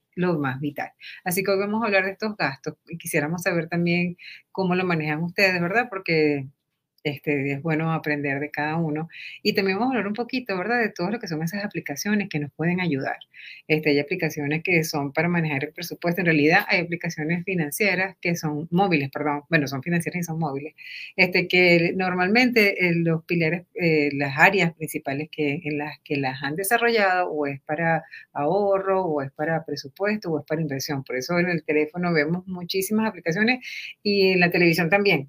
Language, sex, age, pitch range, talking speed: Spanish, female, 30-49, 150-190 Hz, 190 wpm